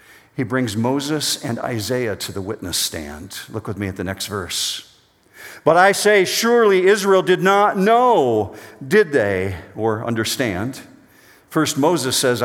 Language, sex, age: English, male, 50-69